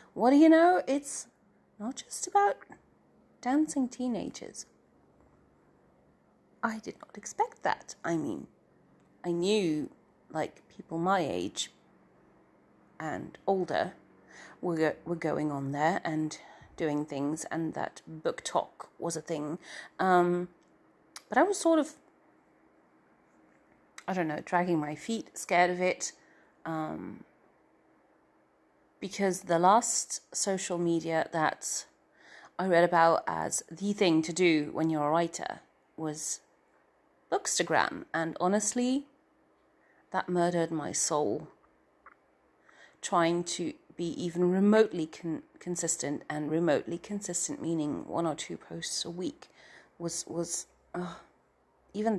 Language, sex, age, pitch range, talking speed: English, female, 30-49, 160-205 Hz, 115 wpm